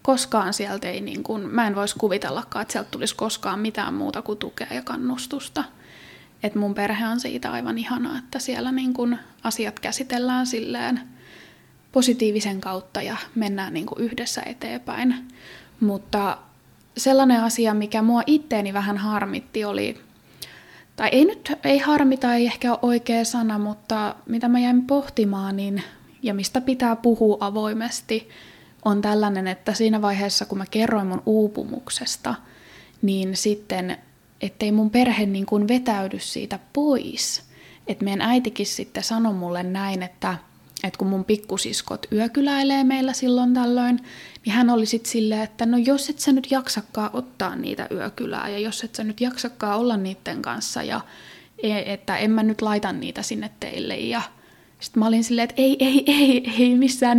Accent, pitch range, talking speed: native, 205-250 Hz, 155 wpm